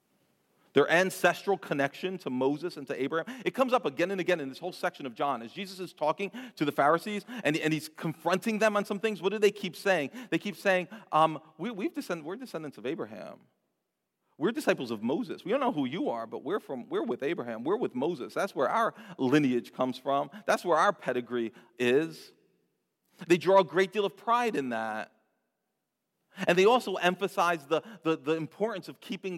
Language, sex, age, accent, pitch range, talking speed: English, male, 40-59, American, 145-200 Hz, 195 wpm